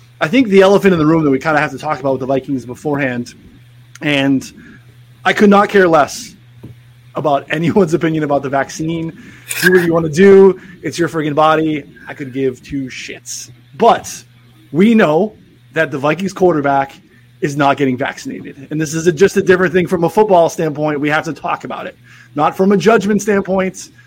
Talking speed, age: 195 wpm, 20-39